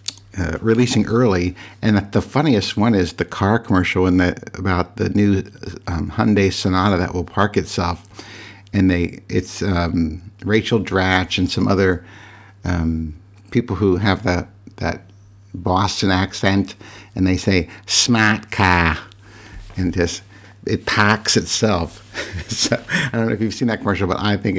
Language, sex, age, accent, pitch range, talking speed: English, male, 60-79, American, 90-105 Hz, 150 wpm